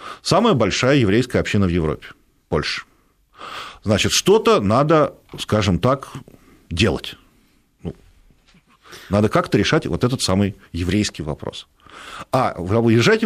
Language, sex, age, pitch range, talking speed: Russian, male, 50-69, 100-135 Hz, 110 wpm